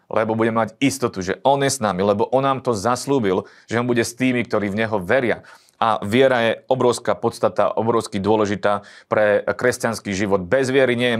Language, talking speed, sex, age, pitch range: Slovak, 200 wpm, male, 40-59, 115-140 Hz